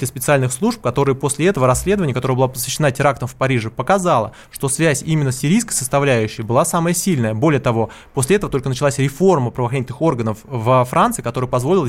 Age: 20-39